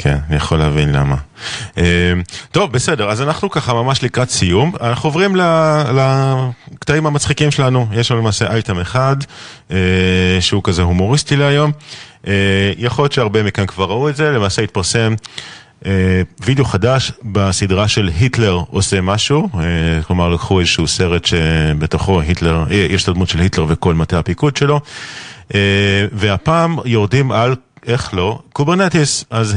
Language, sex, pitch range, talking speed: Hebrew, male, 95-125 Hz, 150 wpm